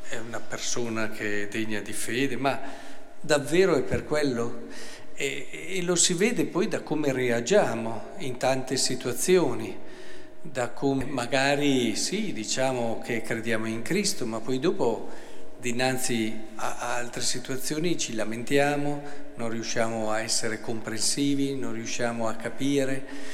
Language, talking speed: Italian, 135 wpm